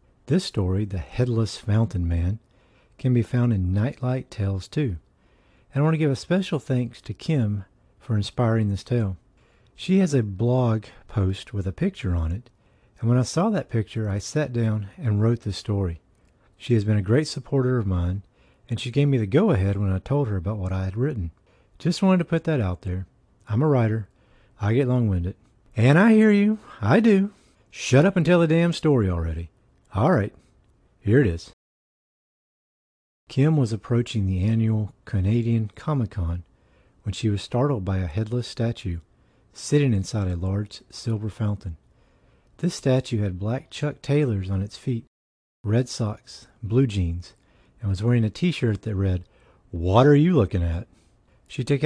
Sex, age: male, 50-69